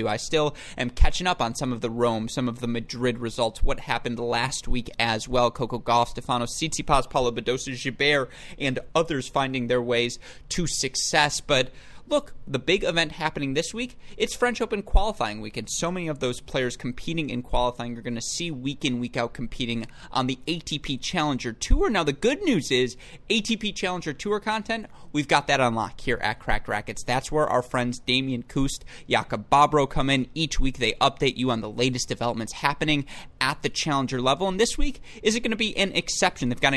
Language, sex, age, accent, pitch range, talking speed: English, male, 30-49, American, 120-155 Hz, 200 wpm